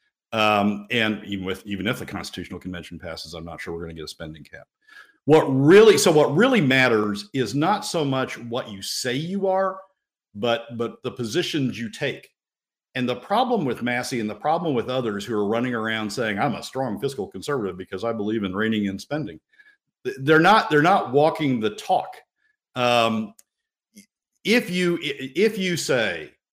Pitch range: 105-155 Hz